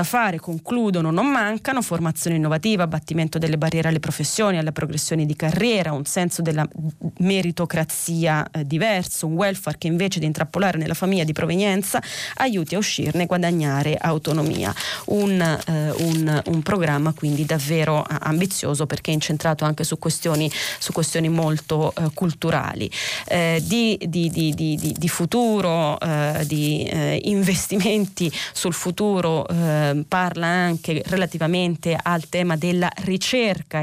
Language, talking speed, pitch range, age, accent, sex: Italian, 135 wpm, 155-190 Hz, 30-49, native, female